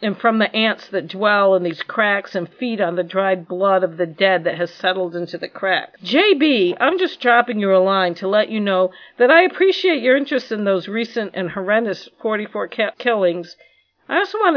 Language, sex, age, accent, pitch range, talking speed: English, female, 50-69, American, 190-255 Hz, 205 wpm